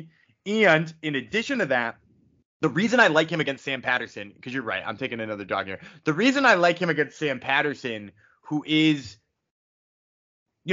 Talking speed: 180 wpm